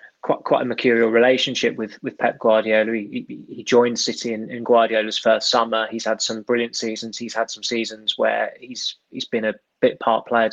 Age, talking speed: 20-39, 200 wpm